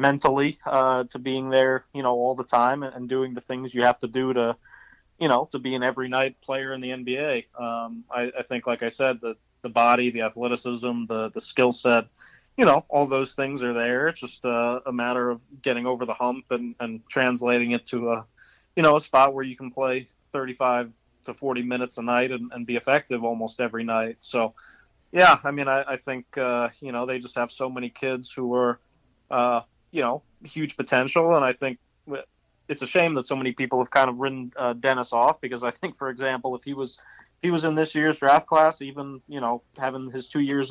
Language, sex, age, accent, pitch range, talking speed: English, male, 20-39, American, 120-135 Hz, 225 wpm